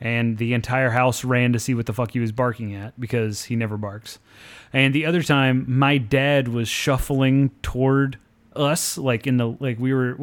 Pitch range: 115-140 Hz